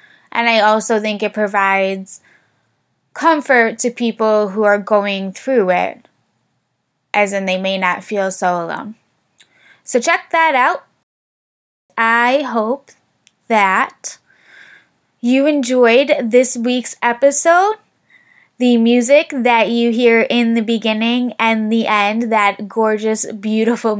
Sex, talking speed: female, 120 wpm